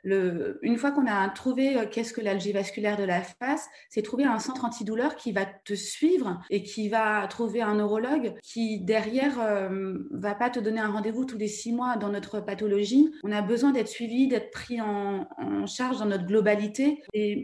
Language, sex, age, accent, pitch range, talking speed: French, female, 30-49, French, 200-235 Hz, 205 wpm